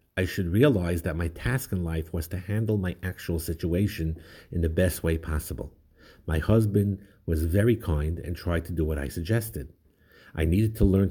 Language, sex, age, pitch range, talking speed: English, male, 50-69, 80-105 Hz, 190 wpm